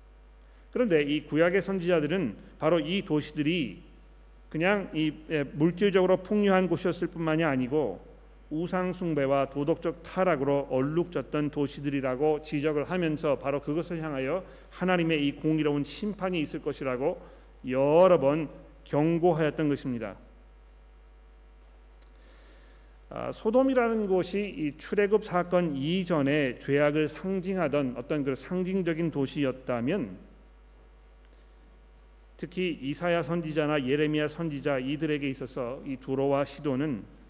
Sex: male